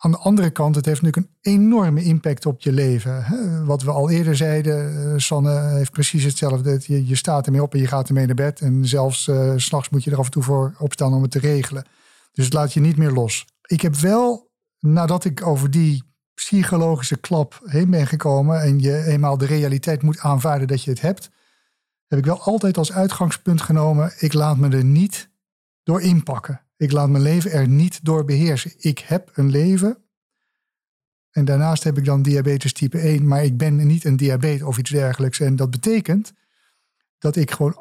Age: 50-69